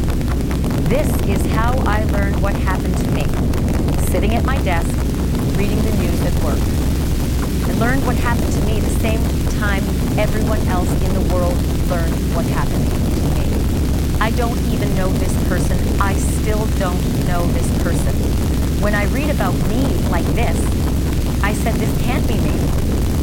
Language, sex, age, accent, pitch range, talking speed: French, female, 40-59, American, 70-85 Hz, 160 wpm